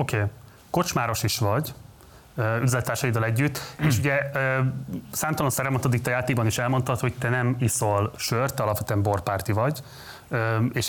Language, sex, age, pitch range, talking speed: Hungarian, male, 30-49, 110-135 Hz, 140 wpm